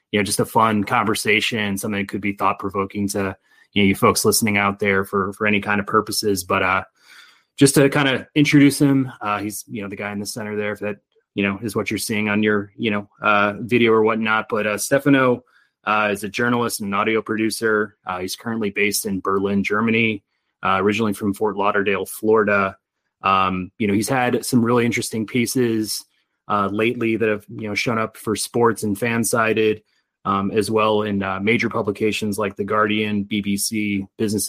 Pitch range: 100-115 Hz